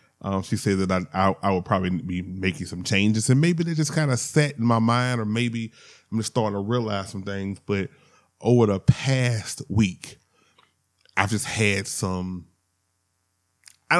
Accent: American